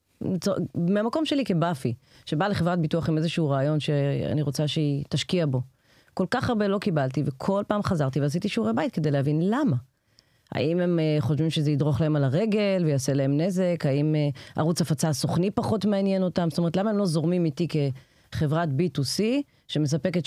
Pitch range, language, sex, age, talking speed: 145-190 Hz, Hebrew, female, 30-49, 165 wpm